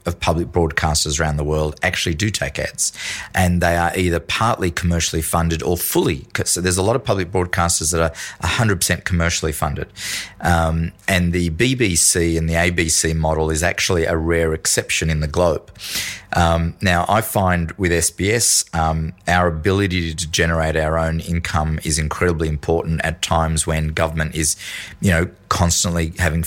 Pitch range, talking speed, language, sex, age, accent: 80-90 Hz, 165 wpm, English, male, 30-49, Australian